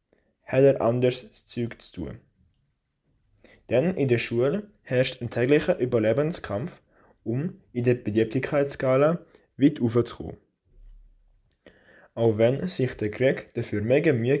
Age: 20-39